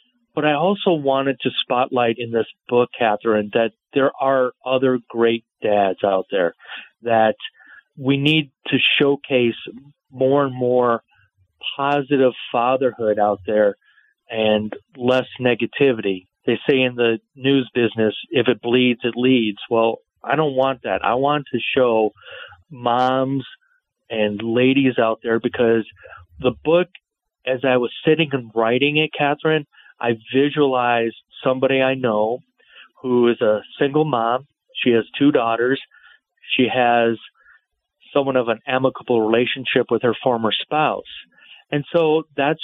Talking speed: 135 wpm